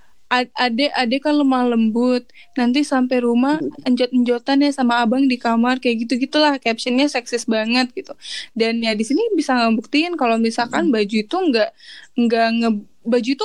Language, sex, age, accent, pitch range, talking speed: Indonesian, female, 10-29, native, 235-275 Hz, 150 wpm